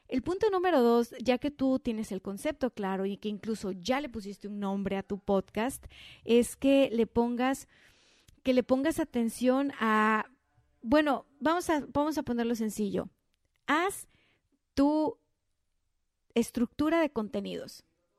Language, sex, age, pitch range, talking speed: Spanish, female, 30-49, 205-280 Hz, 140 wpm